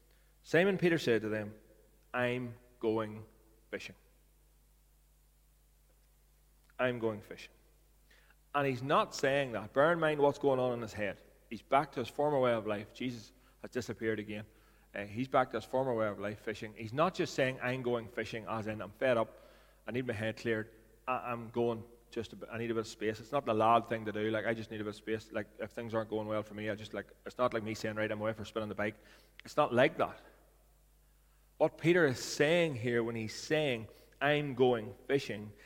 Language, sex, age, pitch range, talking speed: English, male, 30-49, 110-140 Hz, 215 wpm